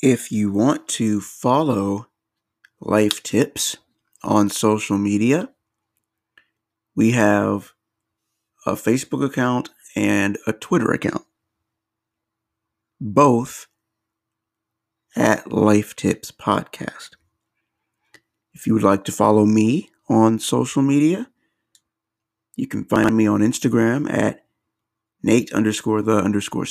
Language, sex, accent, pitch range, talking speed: English, male, American, 105-115 Hz, 100 wpm